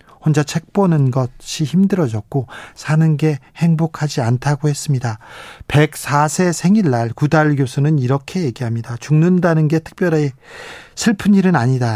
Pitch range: 125-160 Hz